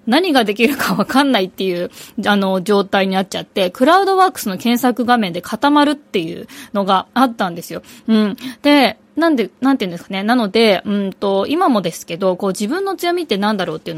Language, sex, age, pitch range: Japanese, female, 20-39, 190-270 Hz